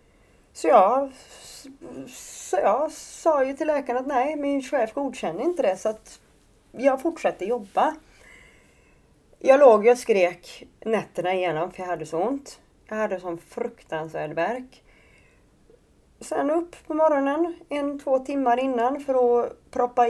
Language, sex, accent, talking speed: Swedish, female, native, 135 wpm